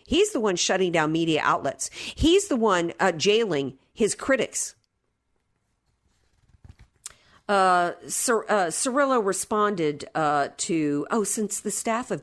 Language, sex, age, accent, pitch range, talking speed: English, female, 50-69, American, 150-200 Hz, 130 wpm